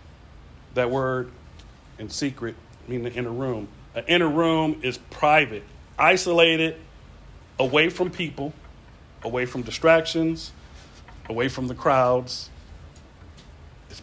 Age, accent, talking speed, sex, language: 40-59, American, 105 wpm, male, English